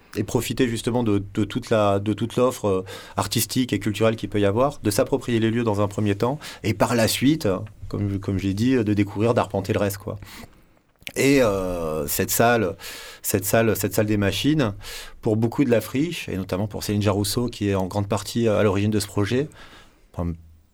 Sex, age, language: male, 30-49, French